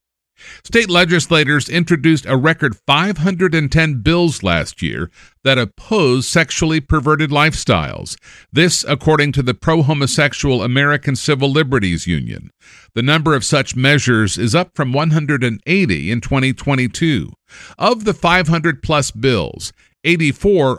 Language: English